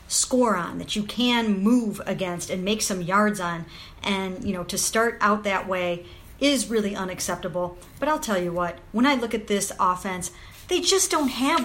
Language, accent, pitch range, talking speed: English, American, 190-240 Hz, 195 wpm